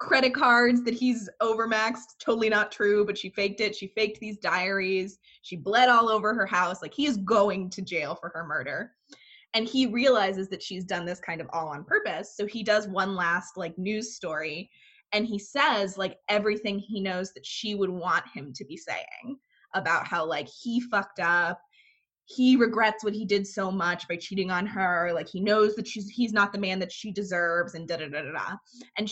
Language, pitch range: English, 185-225 Hz